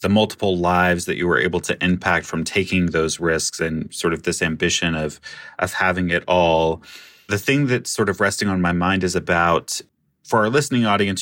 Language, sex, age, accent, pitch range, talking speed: English, male, 30-49, American, 85-95 Hz, 205 wpm